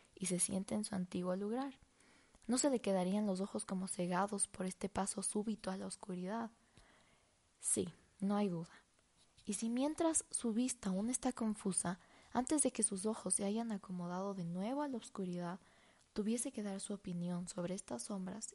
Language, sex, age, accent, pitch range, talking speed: Spanish, female, 20-39, Mexican, 185-230 Hz, 180 wpm